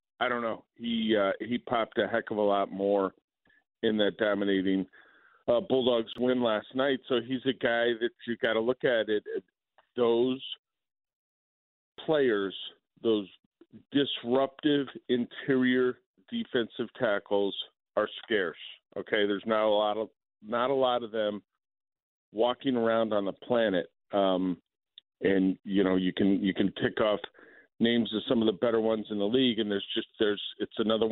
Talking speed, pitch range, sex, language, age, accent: 160 wpm, 100-125 Hz, male, English, 50-69, American